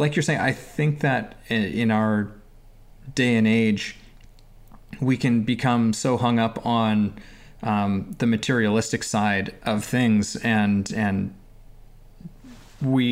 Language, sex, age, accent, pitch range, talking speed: English, male, 20-39, American, 105-125 Hz, 125 wpm